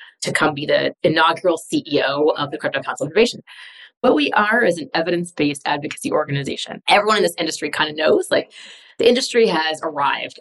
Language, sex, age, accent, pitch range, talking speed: English, female, 30-49, American, 150-180 Hz, 185 wpm